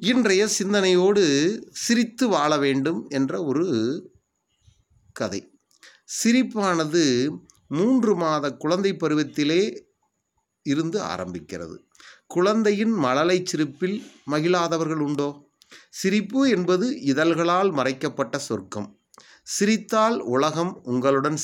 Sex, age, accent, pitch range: male, 30-49, Indian, 120-190 Hz